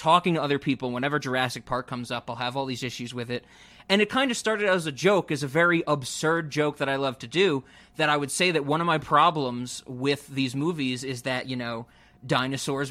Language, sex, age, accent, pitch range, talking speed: English, male, 30-49, American, 140-230 Hz, 235 wpm